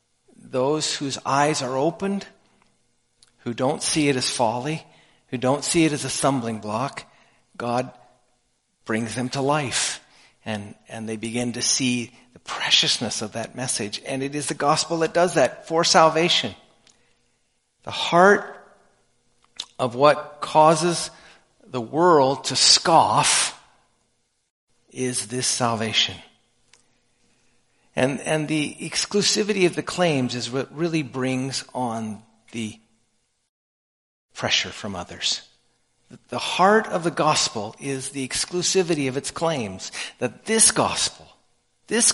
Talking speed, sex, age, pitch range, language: 125 wpm, male, 50-69, 125-165 Hz, English